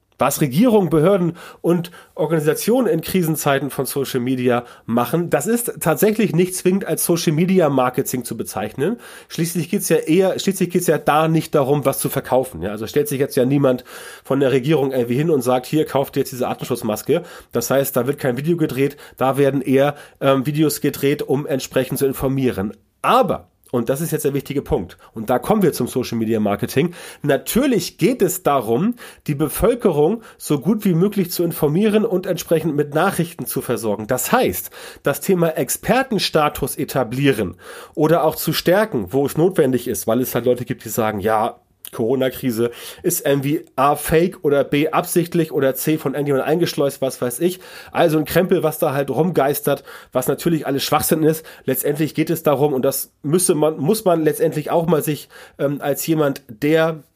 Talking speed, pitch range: 185 wpm, 130-165 Hz